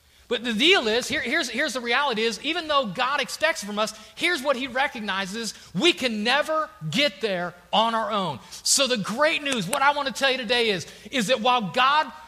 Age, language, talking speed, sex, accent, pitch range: 30-49, English, 215 wpm, male, American, 190-275 Hz